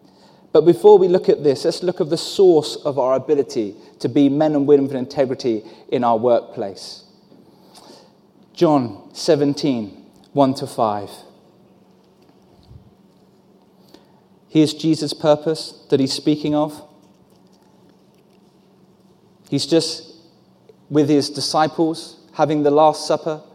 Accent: British